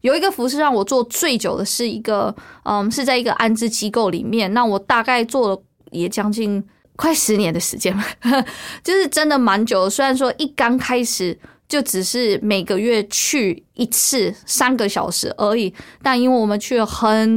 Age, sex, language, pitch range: 20-39, female, Chinese, 215-275 Hz